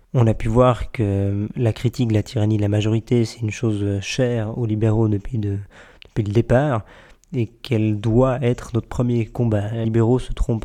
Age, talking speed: 20-39, 185 wpm